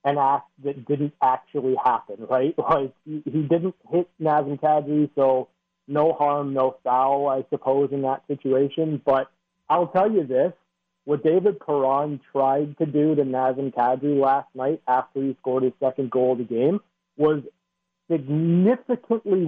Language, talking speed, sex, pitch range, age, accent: English, 155 wpm, male, 130-155 Hz, 40-59, American